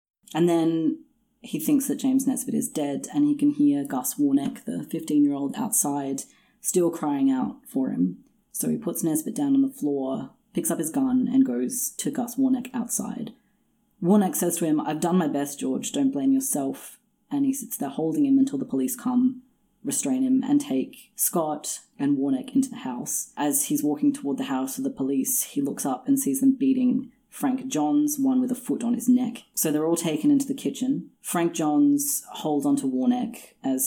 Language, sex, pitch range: English, female, 170-270 Hz